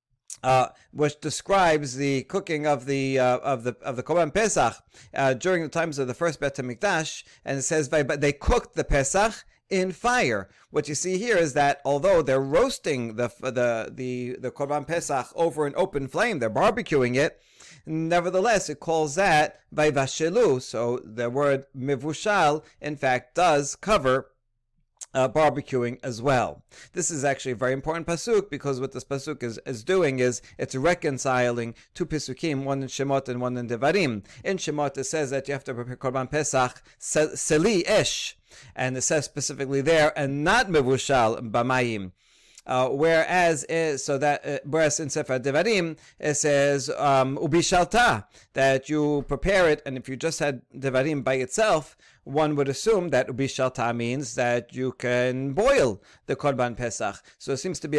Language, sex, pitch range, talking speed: English, male, 130-160 Hz, 160 wpm